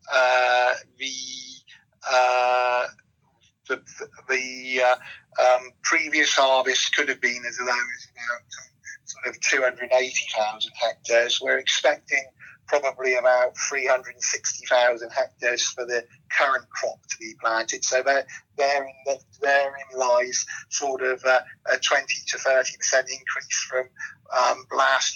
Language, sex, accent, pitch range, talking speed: English, male, British, 125-135 Hz, 120 wpm